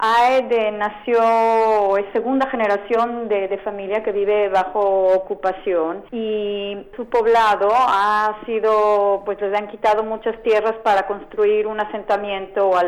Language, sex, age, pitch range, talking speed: Spanish, female, 40-59, 195-225 Hz, 130 wpm